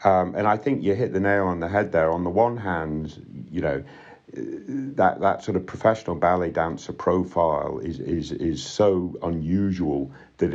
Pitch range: 75-100 Hz